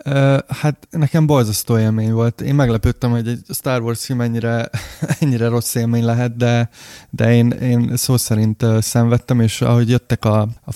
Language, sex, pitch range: Hungarian, male, 110-125 Hz